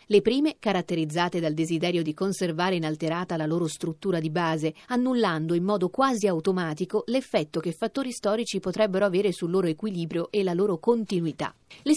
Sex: female